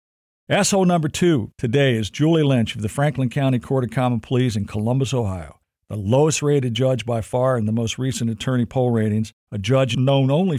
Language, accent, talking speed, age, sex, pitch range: English, American, 200 wpm, 50-69, male, 110-135 Hz